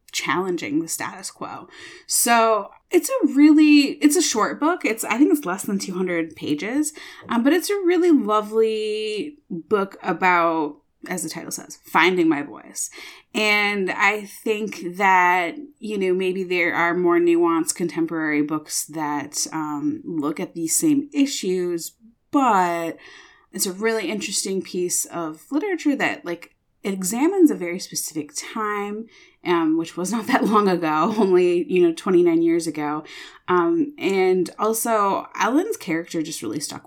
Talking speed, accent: 150 wpm, American